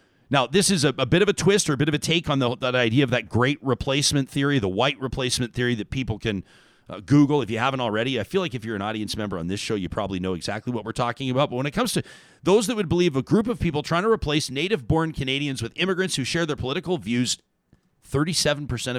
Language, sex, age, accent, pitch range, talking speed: English, male, 40-59, American, 125-190 Hz, 255 wpm